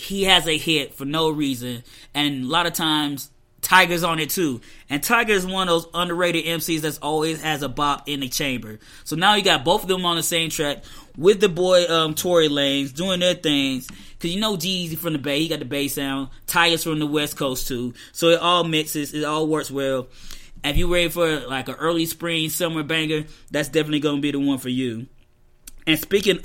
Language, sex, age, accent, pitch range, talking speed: English, male, 20-39, American, 140-170 Hz, 220 wpm